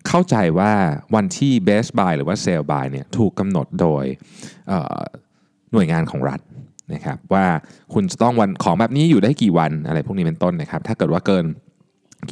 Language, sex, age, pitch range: Thai, male, 20-39, 90-150 Hz